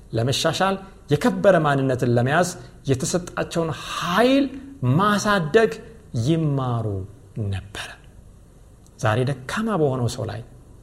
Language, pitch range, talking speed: Amharic, 110-150 Hz, 70 wpm